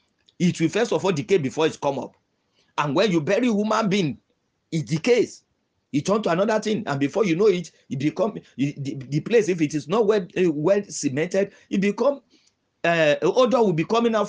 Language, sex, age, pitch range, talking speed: English, male, 50-69, 140-200 Hz, 205 wpm